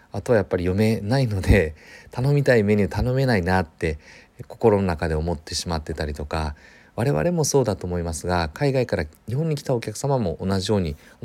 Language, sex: Japanese, male